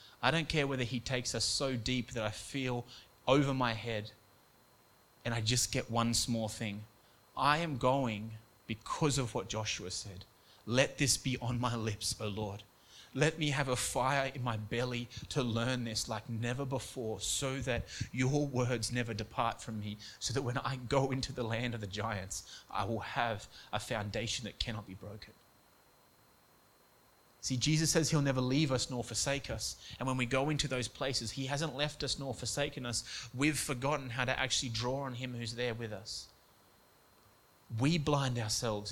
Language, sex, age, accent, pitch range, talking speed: English, male, 30-49, Australian, 110-140 Hz, 185 wpm